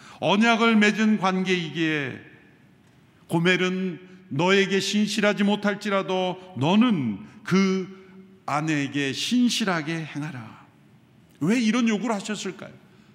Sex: male